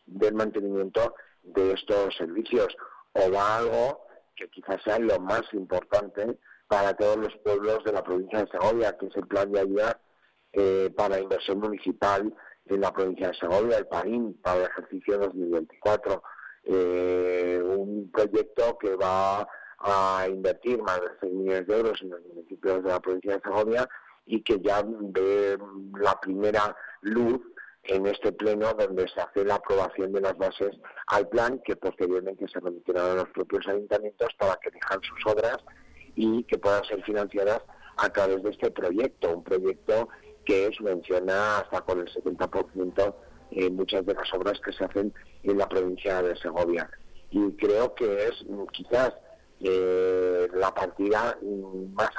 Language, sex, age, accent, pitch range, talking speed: Spanish, male, 50-69, Spanish, 95-105 Hz, 160 wpm